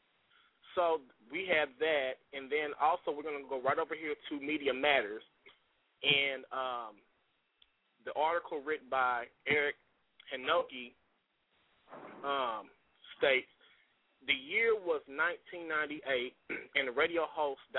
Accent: American